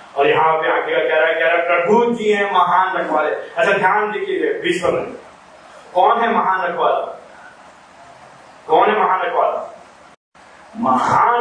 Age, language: 40-59, Hindi